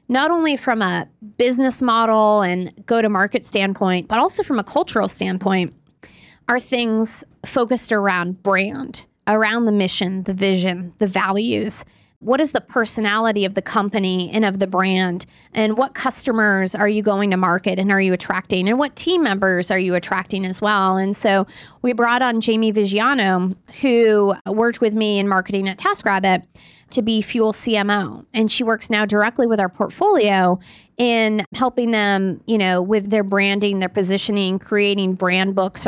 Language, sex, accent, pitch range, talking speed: English, female, American, 190-230 Hz, 165 wpm